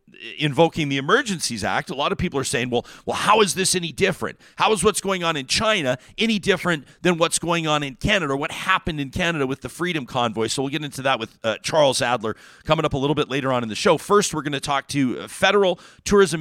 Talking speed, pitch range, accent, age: 250 wpm, 125-170 Hz, American, 40-59